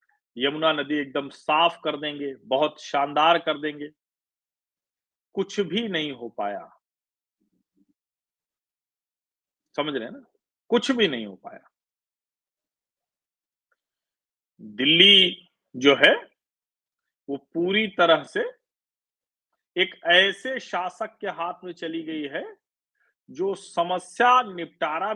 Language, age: Hindi, 40-59